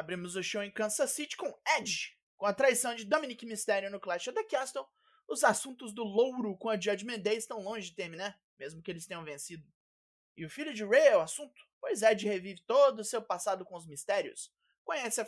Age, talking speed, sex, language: 20-39, 220 wpm, male, Portuguese